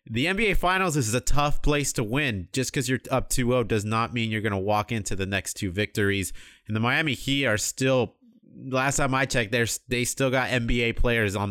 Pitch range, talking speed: 105-130 Hz, 230 wpm